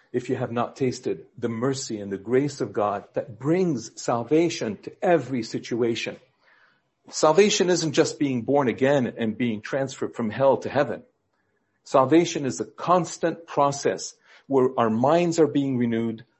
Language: English